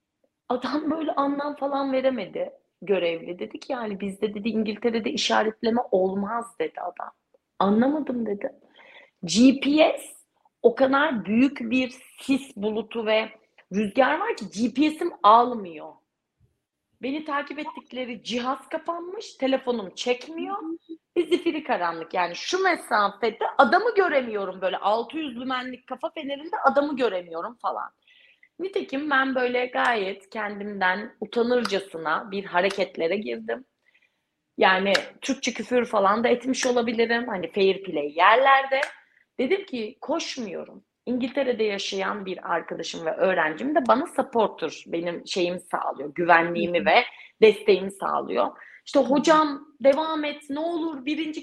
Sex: female